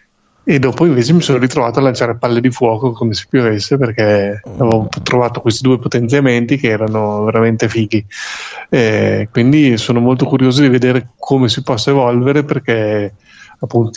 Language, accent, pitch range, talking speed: Italian, native, 115-130 Hz, 160 wpm